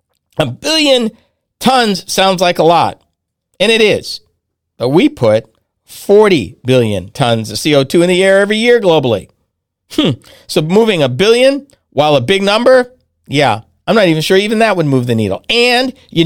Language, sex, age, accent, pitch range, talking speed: English, male, 50-69, American, 130-200 Hz, 170 wpm